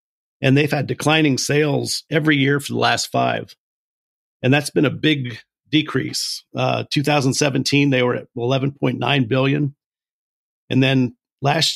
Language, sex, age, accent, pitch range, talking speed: English, male, 50-69, American, 120-140 Hz, 140 wpm